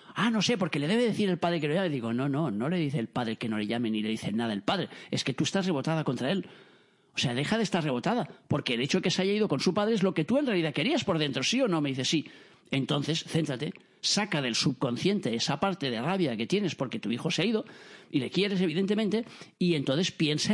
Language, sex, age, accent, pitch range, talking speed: Spanish, male, 40-59, Spanish, 145-205 Hz, 275 wpm